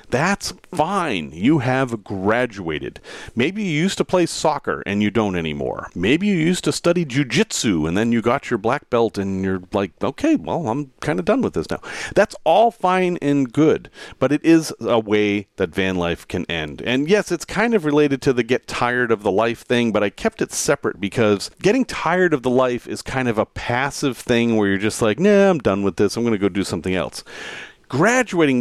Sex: male